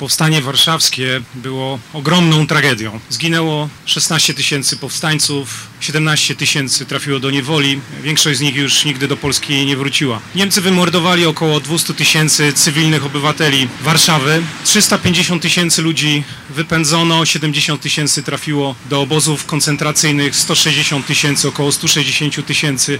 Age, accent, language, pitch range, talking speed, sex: 30-49, native, Polish, 140-165 Hz, 120 wpm, male